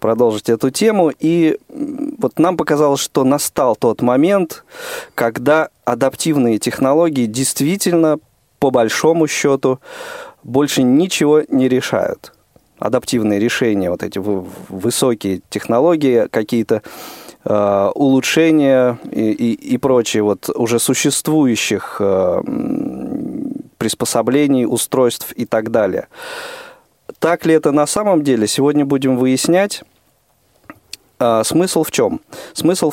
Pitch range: 115-160 Hz